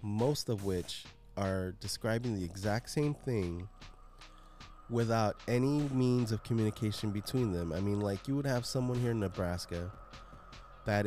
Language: English